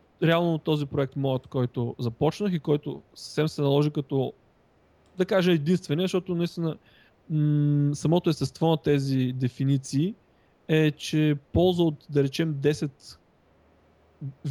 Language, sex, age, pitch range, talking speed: Bulgarian, male, 20-39, 140-165 Hz, 125 wpm